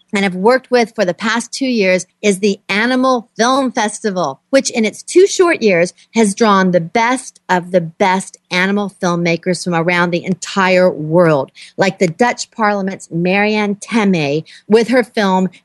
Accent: American